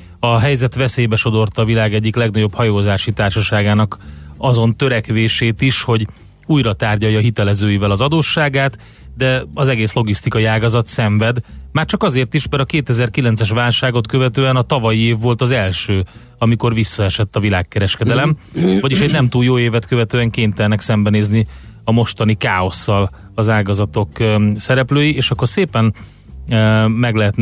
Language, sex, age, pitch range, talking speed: Hungarian, male, 30-49, 110-130 Hz, 140 wpm